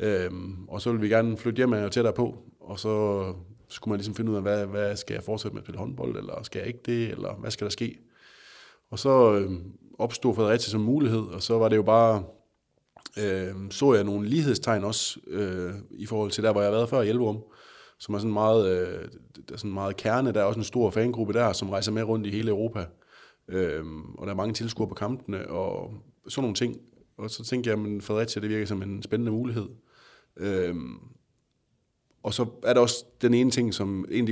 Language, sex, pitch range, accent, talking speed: Danish, male, 100-115 Hz, native, 225 wpm